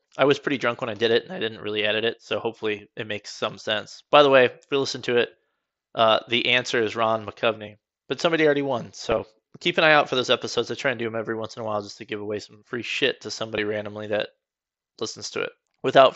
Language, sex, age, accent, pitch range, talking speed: English, male, 20-39, American, 105-130 Hz, 265 wpm